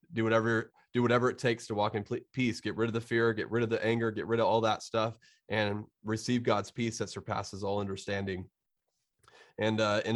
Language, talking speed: English, 220 wpm